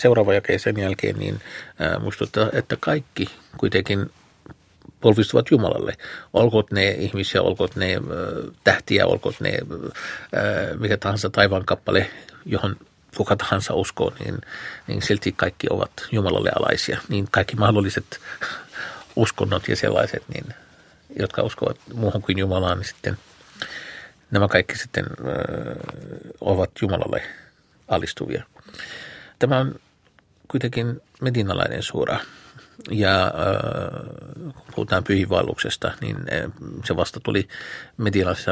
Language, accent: Finnish, native